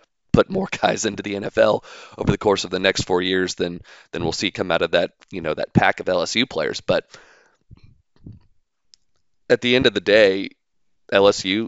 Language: English